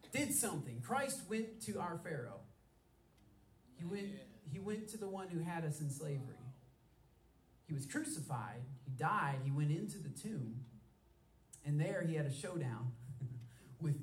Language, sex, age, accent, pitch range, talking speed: English, male, 30-49, American, 130-170 Hz, 155 wpm